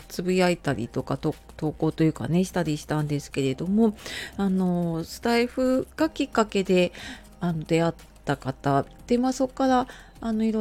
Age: 30-49